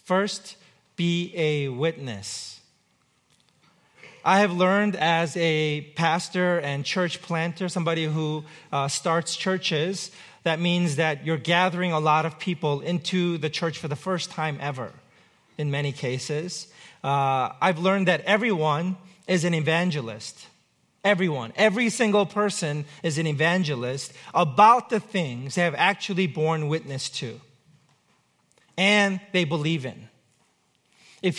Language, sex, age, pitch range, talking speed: English, male, 40-59, 150-190 Hz, 130 wpm